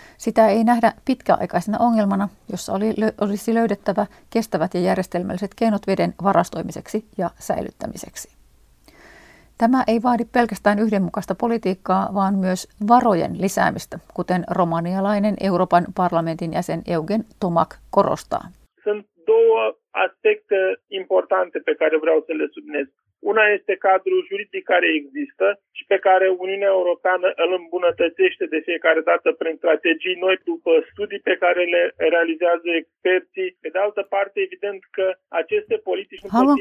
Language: Finnish